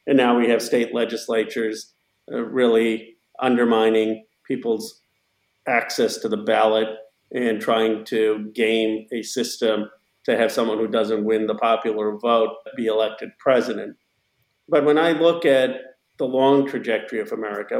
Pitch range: 110-120 Hz